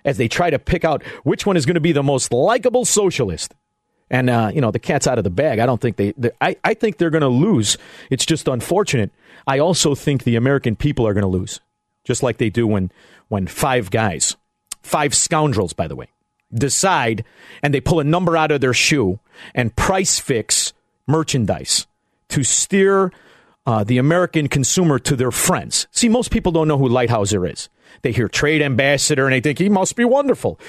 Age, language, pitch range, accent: 40-59, English, 125-195 Hz, American